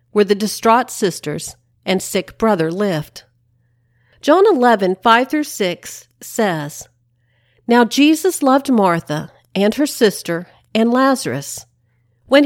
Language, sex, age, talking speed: English, female, 50-69, 105 wpm